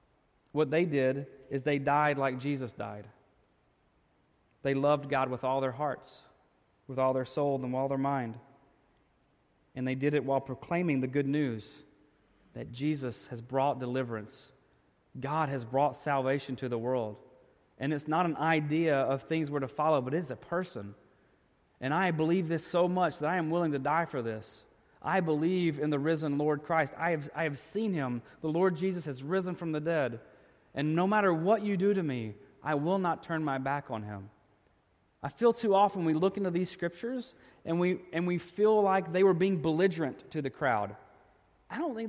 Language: English